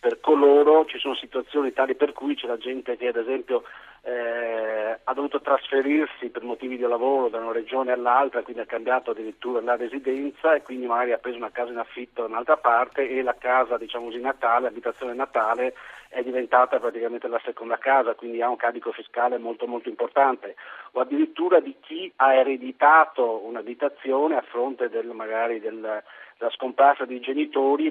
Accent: native